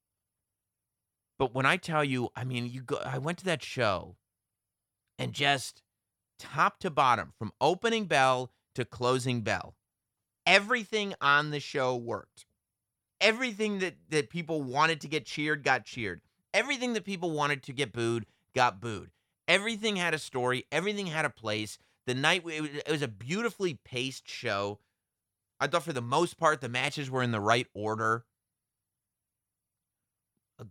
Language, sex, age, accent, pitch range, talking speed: English, male, 30-49, American, 110-155 Hz, 155 wpm